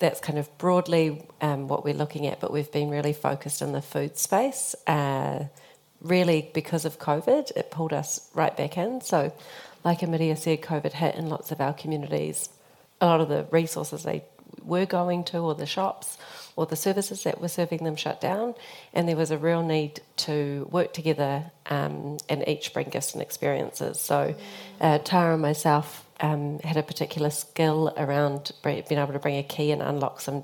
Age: 40-59